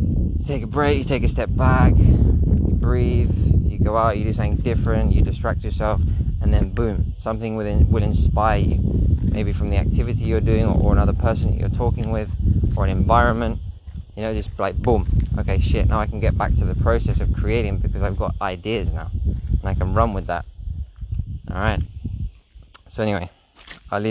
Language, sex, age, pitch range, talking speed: English, male, 20-39, 85-105 Hz, 185 wpm